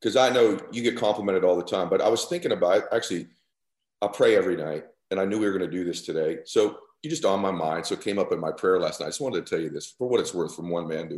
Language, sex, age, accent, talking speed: English, male, 40-59, American, 315 wpm